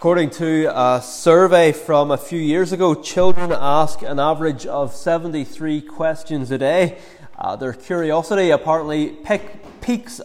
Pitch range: 145-180 Hz